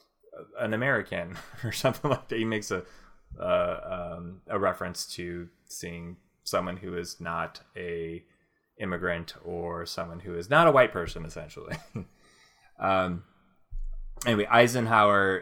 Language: English